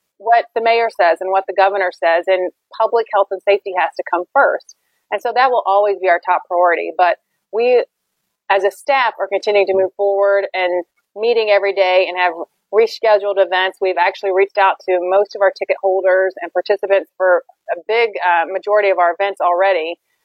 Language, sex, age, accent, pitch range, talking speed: English, female, 30-49, American, 185-215 Hz, 195 wpm